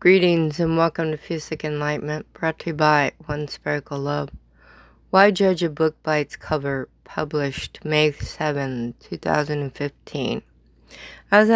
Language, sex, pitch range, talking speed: English, female, 140-160 Hz, 130 wpm